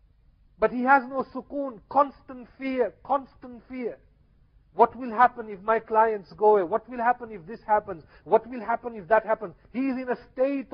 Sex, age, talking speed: male, 50-69, 190 wpm